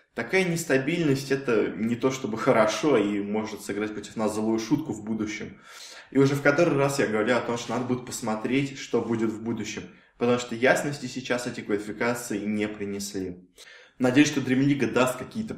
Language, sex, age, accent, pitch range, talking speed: Russian, male, 20-39, native, 105-130 Hz, 175 wpm